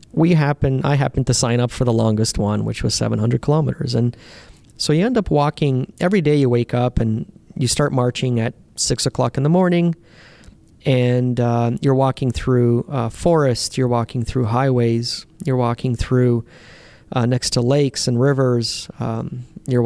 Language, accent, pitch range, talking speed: English, American, 120-140 Hz, 175 wpm